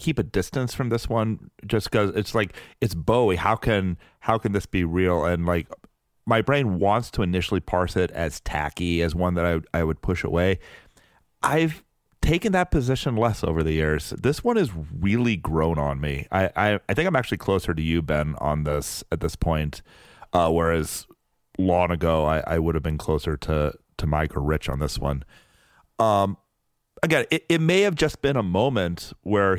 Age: 30-49